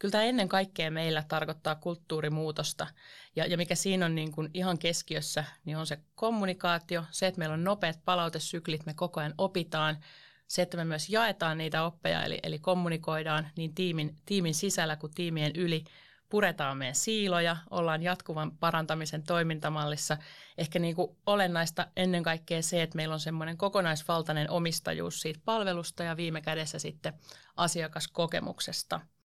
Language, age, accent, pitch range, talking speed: Finnish, 30-49, native, 155-180 Hz, 150 wpm